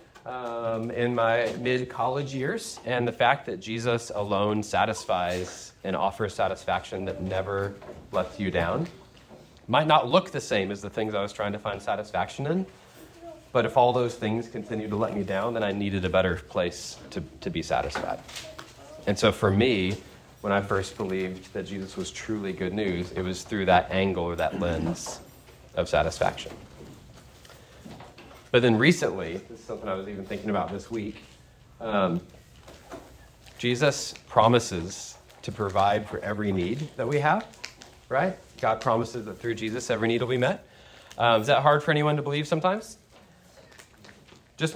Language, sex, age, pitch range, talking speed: English, male, 30-49, 100-135 Hz, 165 wpm